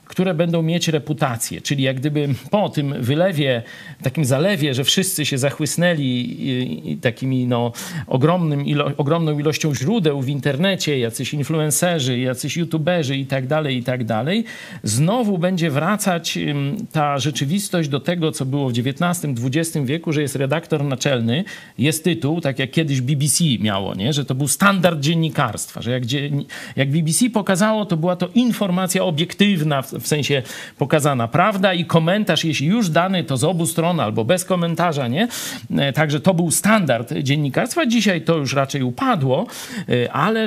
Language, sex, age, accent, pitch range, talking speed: Polish, male, 50-69, native, 140-185 Hz, 155 wpm